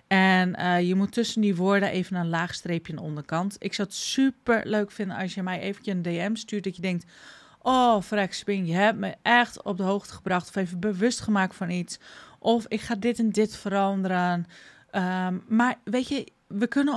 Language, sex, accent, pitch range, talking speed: Dutch, female, Dutch, 180-225 Hz, 210 wpm